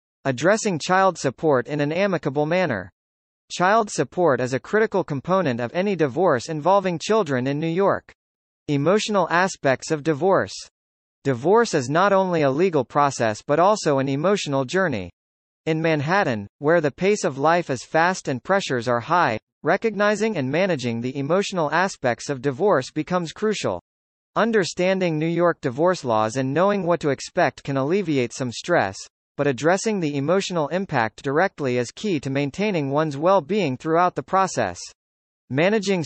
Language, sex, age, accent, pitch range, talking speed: English, male, 40-59, American, 135-190 Hz, 150 wpm